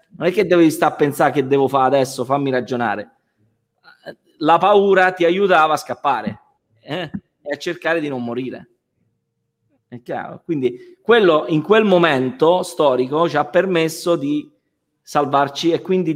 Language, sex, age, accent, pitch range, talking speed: Italian, male, 30-49, native, 130-170 Hz, 150 wpm